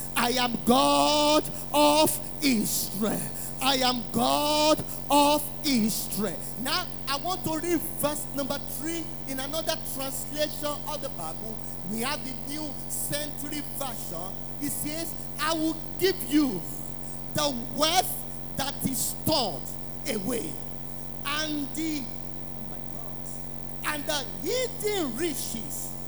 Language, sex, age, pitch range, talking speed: English, male, 50-69, 265-330 Hz, 115 wpm